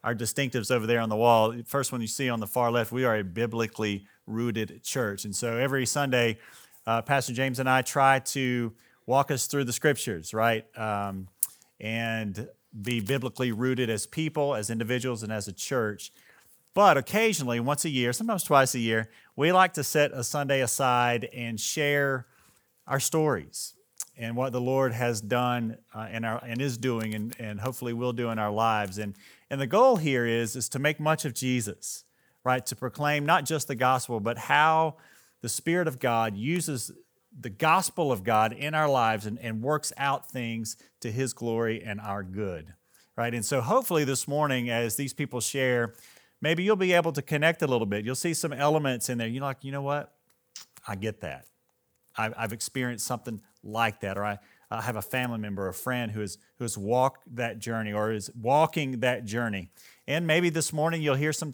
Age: 40-59